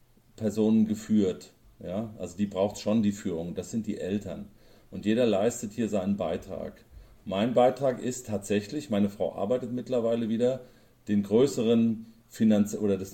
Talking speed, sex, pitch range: 140 wpm, male, 110-125 Hz